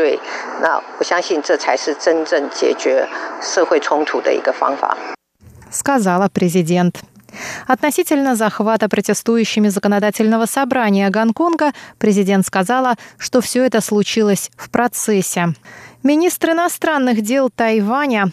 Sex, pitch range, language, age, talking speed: female, 190-255 Hz, Russian, 30-49, 65 wpm